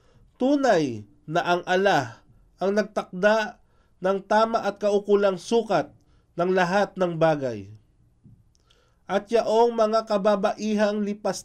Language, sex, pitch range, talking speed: Filipino, male, 130-210 Hz, 105 wpm